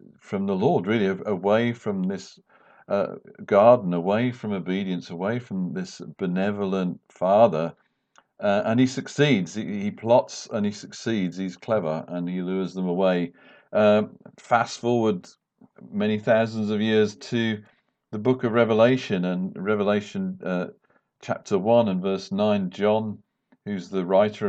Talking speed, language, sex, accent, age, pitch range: 145 wpm, English, male, British, 50-69, 95-125 Hz